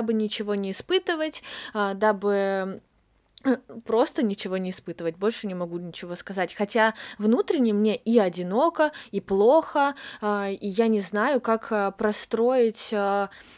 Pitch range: 200-255 Hz